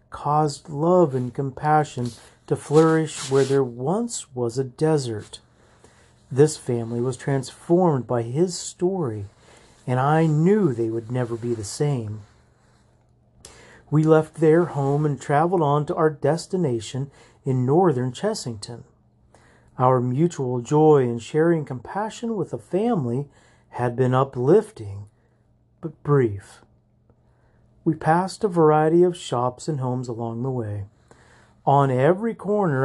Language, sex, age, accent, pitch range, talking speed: English, male, 40-59, American, 120-165 Hz, 125 wpm